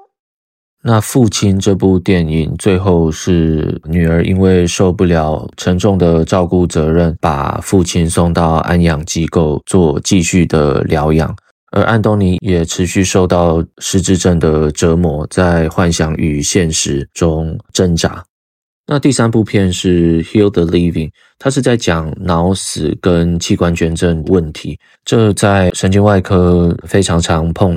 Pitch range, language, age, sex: 80-95 Hz, Chinese, 20-39, male